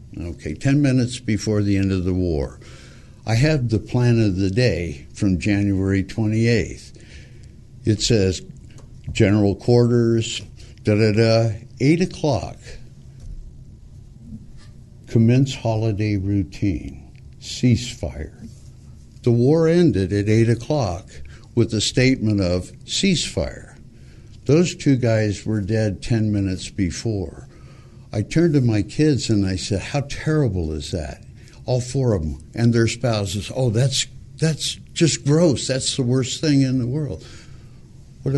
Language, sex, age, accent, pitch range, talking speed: English, male, 60-79, American, 95-130 Hz, 130 wpm